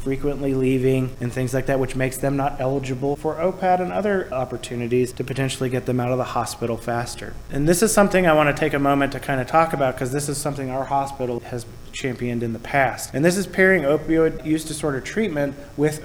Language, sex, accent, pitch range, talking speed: English, male, American, 135-180 Hz, 220 wpm